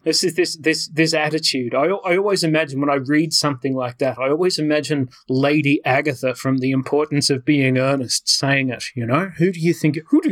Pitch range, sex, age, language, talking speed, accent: 135-175 Hz, male, 30-49, English, 215 wpm, Australian